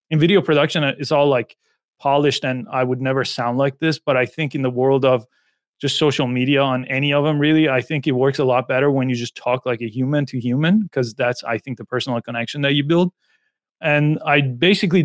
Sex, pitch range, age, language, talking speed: male, 135-160 Hz, 30-49, English, 230 wpm